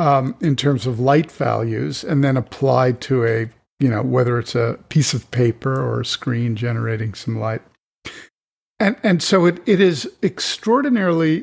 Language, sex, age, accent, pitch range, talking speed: English, male, 50-69, American, 125-165 Hz, 170 wpm